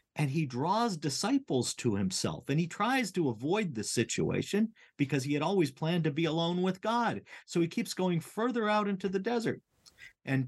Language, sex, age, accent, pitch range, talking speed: English, male, 50-69, American, 120-180 Hz, 190 wpm